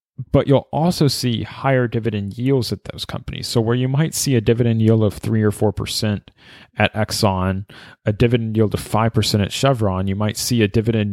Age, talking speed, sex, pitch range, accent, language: 30-49, 195 wpm, male, 100-125 Hz, American, English